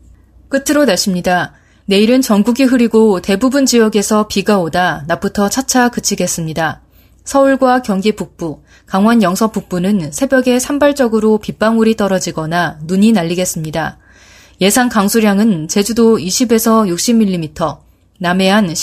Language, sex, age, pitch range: Korean, female, 20-39, 175-230 Hz